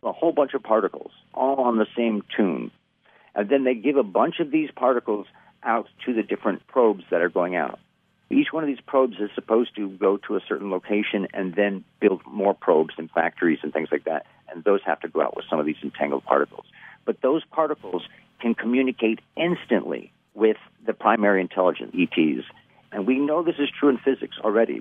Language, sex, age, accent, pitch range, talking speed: English, male, 50-69, American, 100-130 Hz, 205 wpm